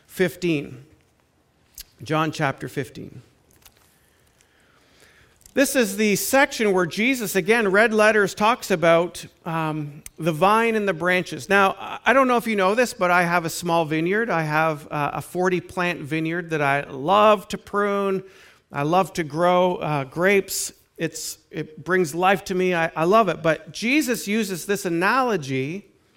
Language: English